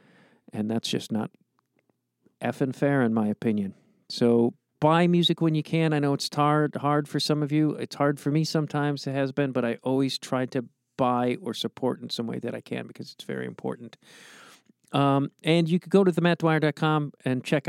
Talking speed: 200 wpm